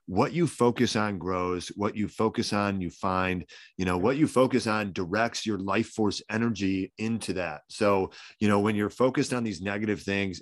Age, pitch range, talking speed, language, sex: 30-49, 100-120 Hz, 195 wpm, English, male